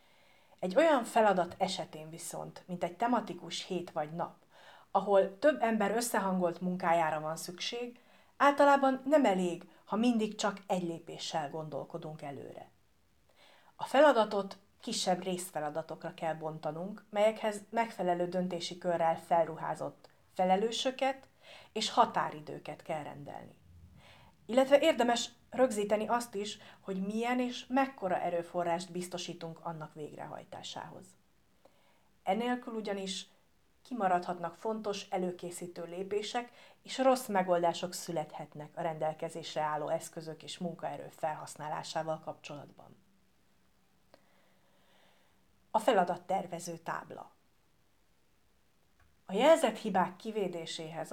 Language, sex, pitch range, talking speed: Hungarian, female, 165-220 Hz, 95 wpm